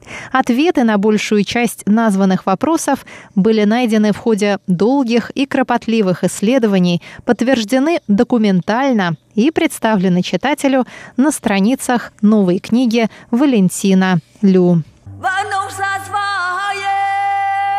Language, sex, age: Russian, female, 20-39